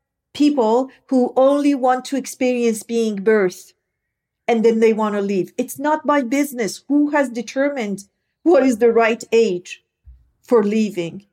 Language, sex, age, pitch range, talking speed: English, female, 50-69, 230-290 Hz, 150 wpm